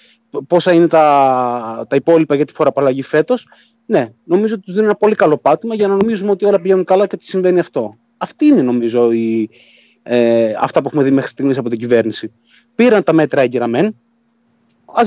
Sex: male